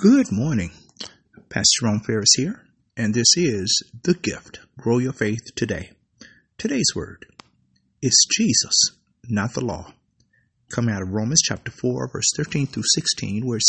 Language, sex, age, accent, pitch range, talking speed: English, male, 50-69, American, 105-130 Hz, 150 wpm